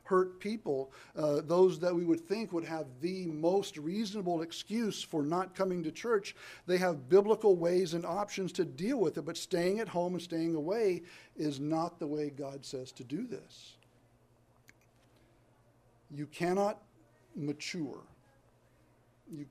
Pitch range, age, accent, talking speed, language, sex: 145-180 Hz, 60-79, American, 150 wpm, English, male